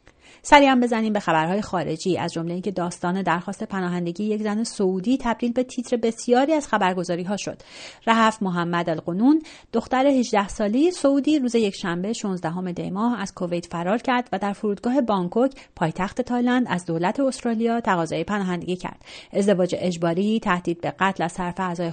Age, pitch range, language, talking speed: 30-49, 180-240 Hz, English, 155 wpm